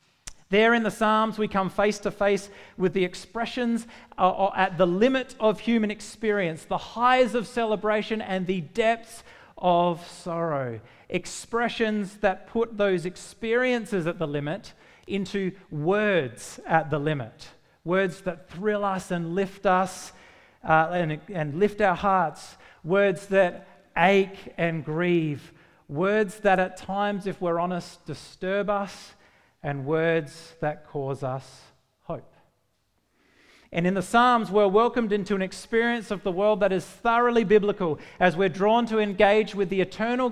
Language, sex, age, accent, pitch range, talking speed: English, male, 40-59, Australian, 160-205 Hz, 145 wpm